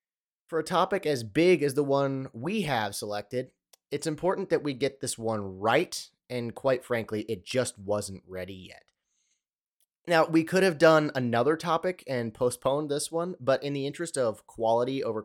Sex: male